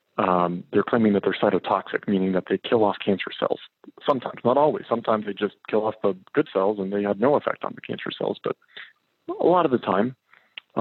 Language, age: English, 40-59